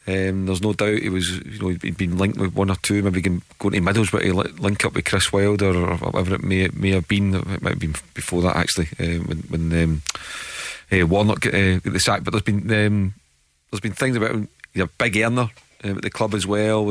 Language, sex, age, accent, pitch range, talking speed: English, male, 40-59, British, 95-105 Hz, 240 wpm